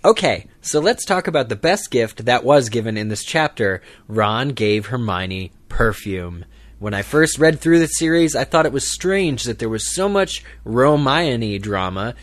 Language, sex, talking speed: English, male, 180 wpm